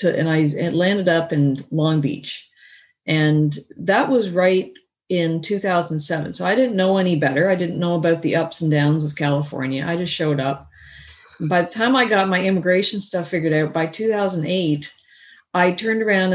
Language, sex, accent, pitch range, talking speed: English, female, American, 145-190 Hz, 185 wpm